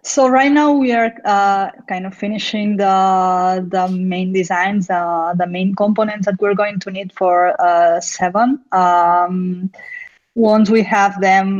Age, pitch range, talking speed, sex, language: 20-39, 180-210 Hz, 155 wpm, female, English